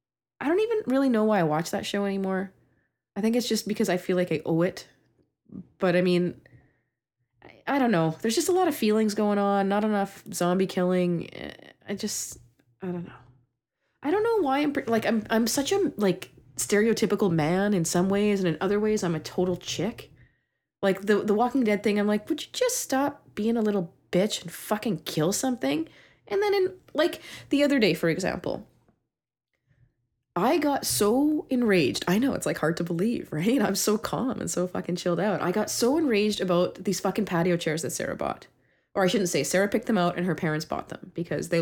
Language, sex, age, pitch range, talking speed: English, female, 20-39, 165-235 Hz, 210 wpm